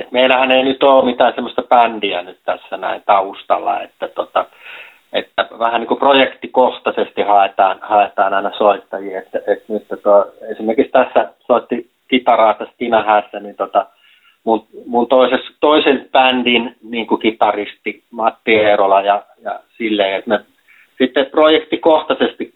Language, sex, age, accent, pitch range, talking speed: Finnish, male, 30-49, native, 105-130 Hz, 135 wpm